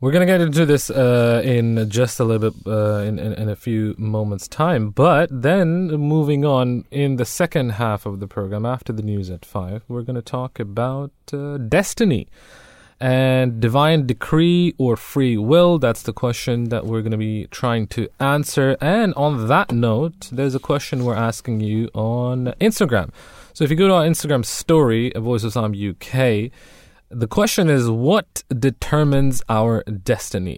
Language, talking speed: English, 180 wpm